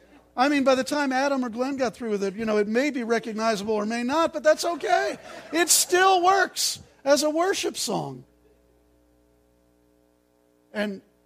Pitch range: 185-275 Hz